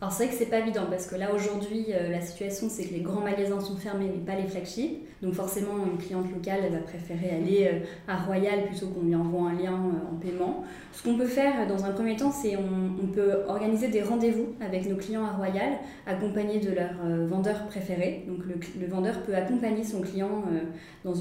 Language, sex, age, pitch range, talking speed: French, female, 20-39, 175-200 Hz, 215 wpm